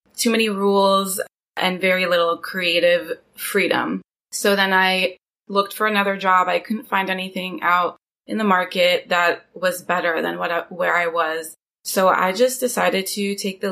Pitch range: 175-200 Hz